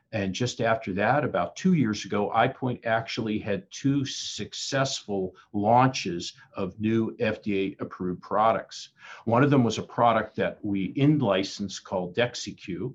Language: English